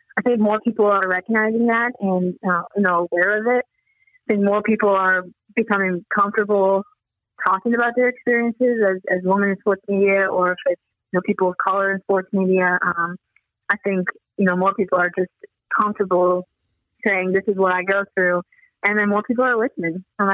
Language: English